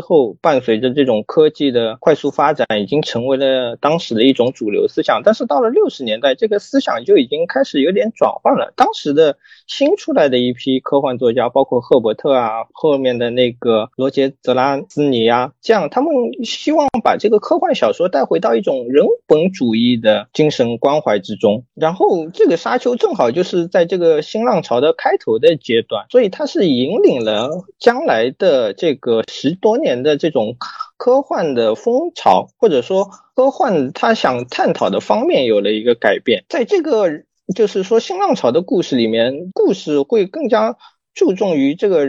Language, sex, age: Chinese, male, 20-39